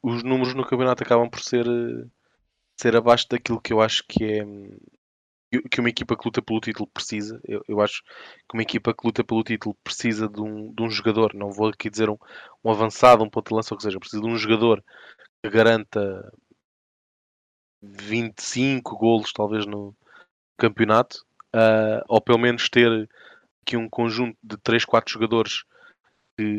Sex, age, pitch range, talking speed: male, 20-39, 105-115 Hz, 175 wpm